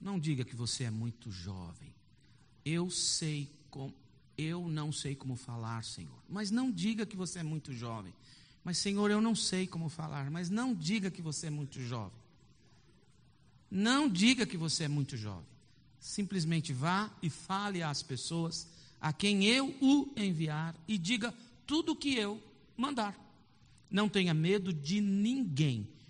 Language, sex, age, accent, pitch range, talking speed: Portuguese, male, 50-69, Brazilian, 135-180 Hz, 160 wpm